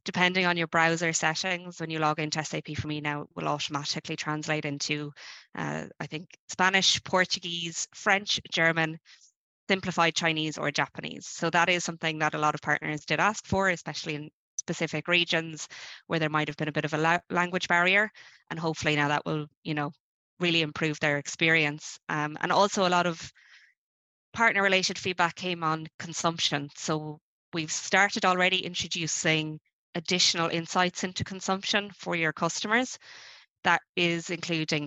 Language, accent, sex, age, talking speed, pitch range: English, Irish, female, 20-39, 160 wpm, 155-180 Hz